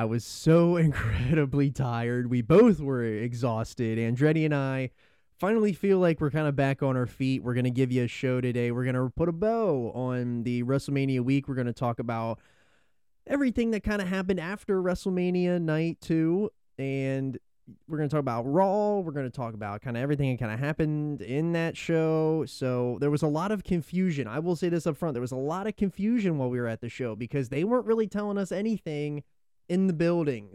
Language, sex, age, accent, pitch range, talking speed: English, male, 20-39, American, 130-170 Hz, 220 wpm